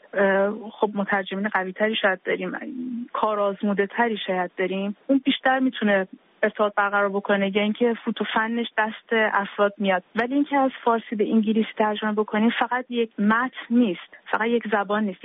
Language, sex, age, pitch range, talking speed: Persian, female, 30-49, 205-255 Hz, 150 wpm